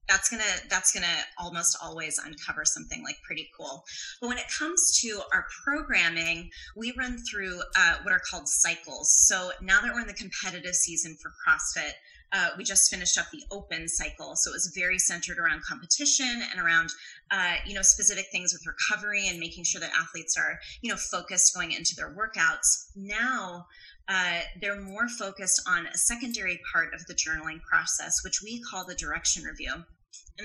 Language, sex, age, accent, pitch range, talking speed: English, female, 20-39, American, 170-210 Hz, 185 wpm